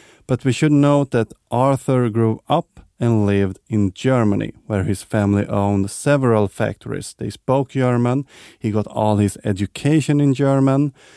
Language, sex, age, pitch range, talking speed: English, male, 30-49, 105-130 Hz, 150 wpm